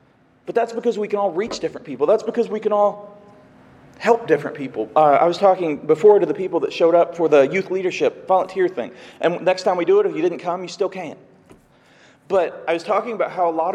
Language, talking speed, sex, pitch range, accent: English, 245 wpm, male, 175-215 Hz, American